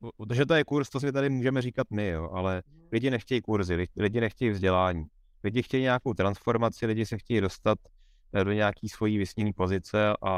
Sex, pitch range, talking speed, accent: male, 95-120 Hz, 185 wpm, native